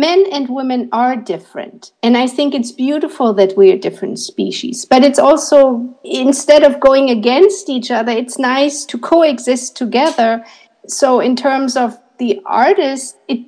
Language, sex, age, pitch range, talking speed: English, female, 50-69, 230-280 Hz, 155 wpm